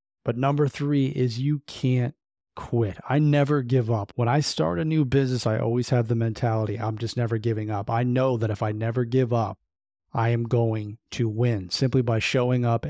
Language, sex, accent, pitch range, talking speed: English, male, American, 110-130 Hz, 205 wpm